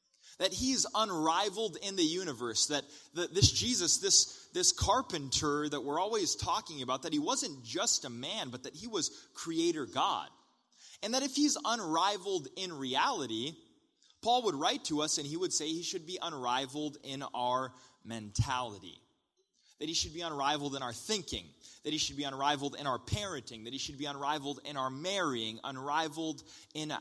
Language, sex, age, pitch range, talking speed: English, male, 20-39, 135-195 Hz, 175 wpm